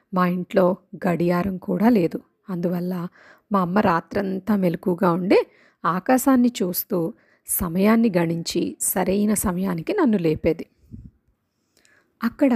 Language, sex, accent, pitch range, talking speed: Telugu, female, native, 180-230 Hz, 95 wpm